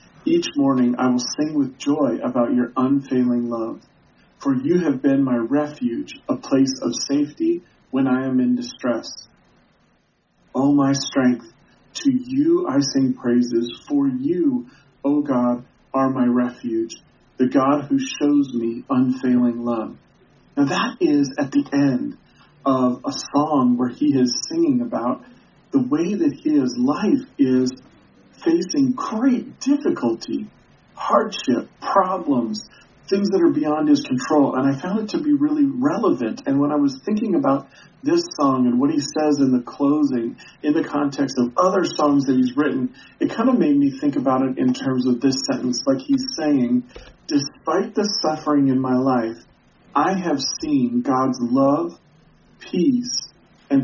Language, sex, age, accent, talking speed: English, male, 40-59, American, 155 wpm